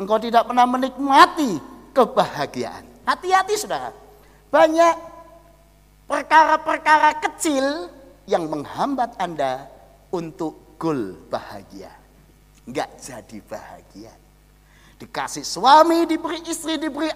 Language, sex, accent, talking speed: Indonesian, male, native, 85 wpm